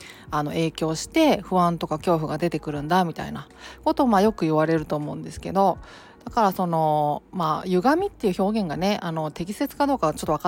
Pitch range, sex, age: 160-240 Hz, female, 40-59